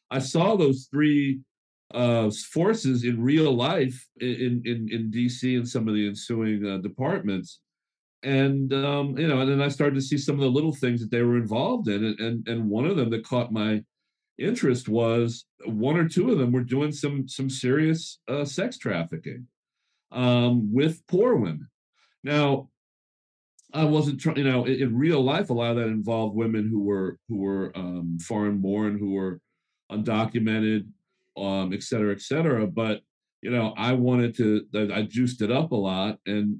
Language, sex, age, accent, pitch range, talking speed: English, male, 50-69, American, 105-130 Hz, 185 wpm